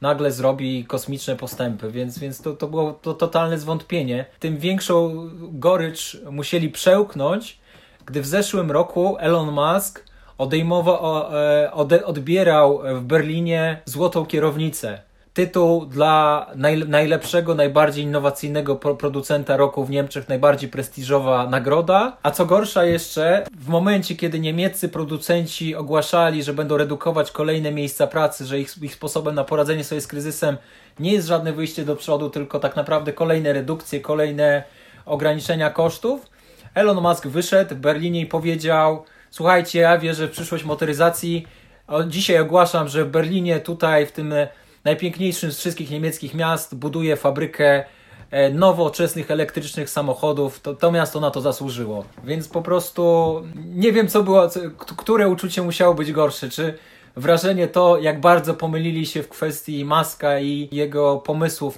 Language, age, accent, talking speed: Polish, 20-39, native, 140 wpm